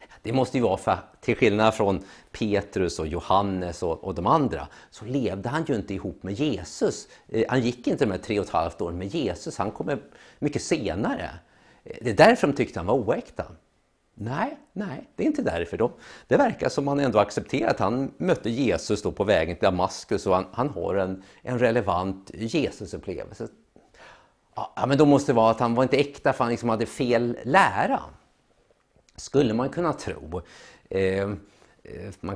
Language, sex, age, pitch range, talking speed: English, male, 50-69, 95-140 Hz, 185 wpm